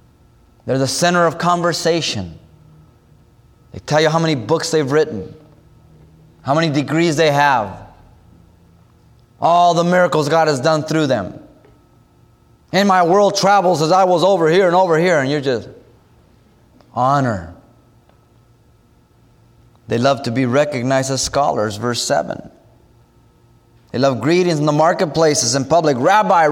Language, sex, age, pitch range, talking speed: English, male, 30-49, 120-165 Hz, 135 wpm